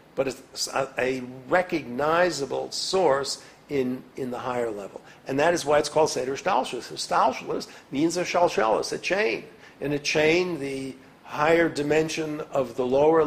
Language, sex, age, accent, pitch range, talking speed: English, male, 60-79, American, 135-175 Hz, 150 wpm